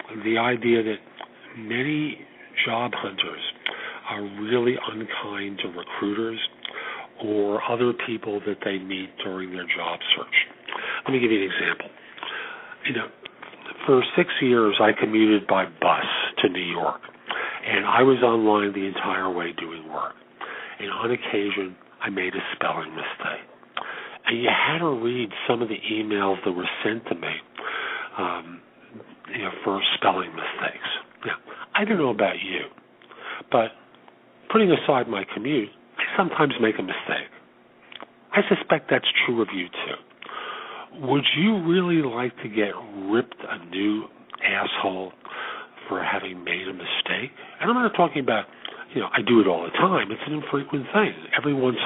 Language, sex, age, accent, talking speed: English, male, 50-69, American, 155 wpm